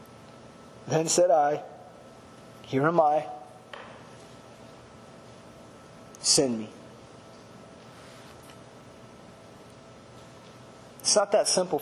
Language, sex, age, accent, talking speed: English, male, 30-49, American, 60 wpm